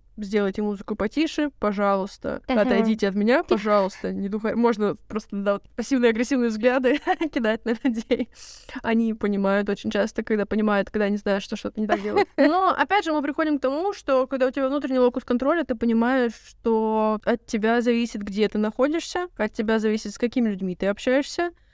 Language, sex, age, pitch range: Russian, female, 20-39, 215-265 Hz